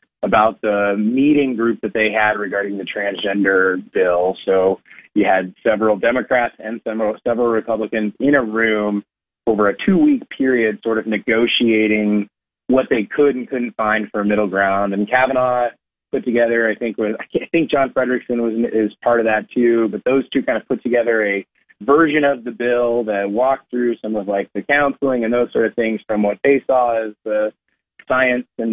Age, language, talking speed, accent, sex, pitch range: 30-49, English, 190 wpm, American, male, 105-130 Hz